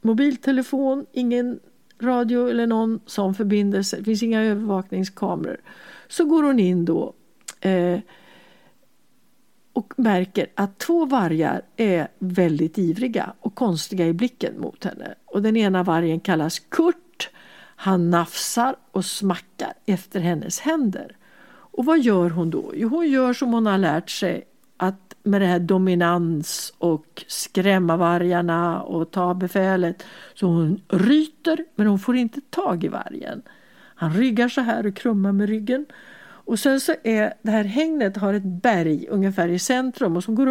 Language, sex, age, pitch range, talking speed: English, female, 60-79, 185-250 Hz, 150 wpm